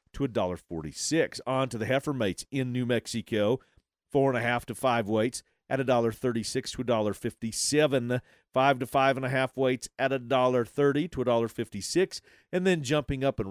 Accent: American